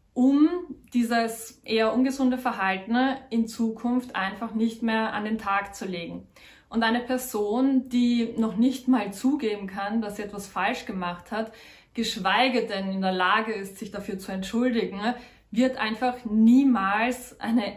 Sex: female